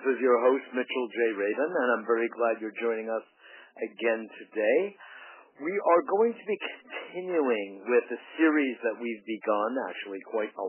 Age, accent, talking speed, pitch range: 50-69, American, 175 wpm, 115-160 Hz